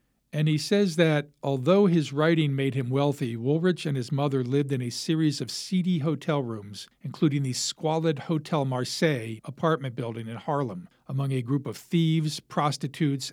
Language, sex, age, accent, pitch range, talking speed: English, male, 50-69, American, 130-150 Hz, 165 wpm